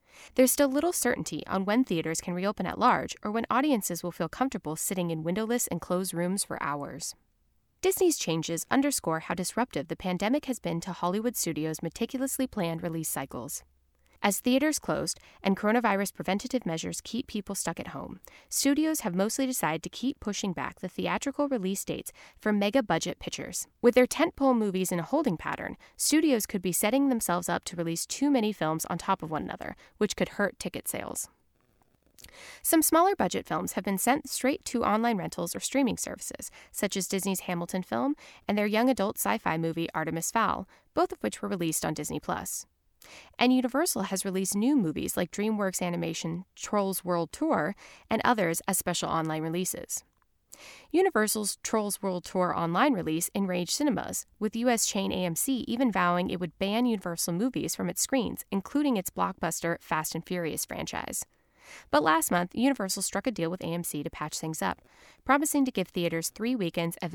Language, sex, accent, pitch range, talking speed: English, female, American, 170-250 Hz, 175 wpm